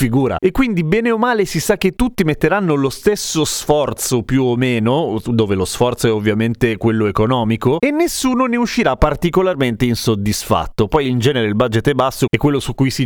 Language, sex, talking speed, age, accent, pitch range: Italian, male, 190 wpm, 30-49, native, 110-150 Hz